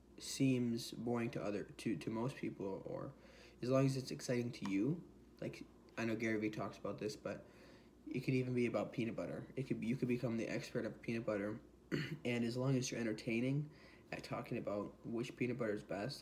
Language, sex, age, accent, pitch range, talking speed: English, male, 20-39, American, 110-130 Hz, 210 wpm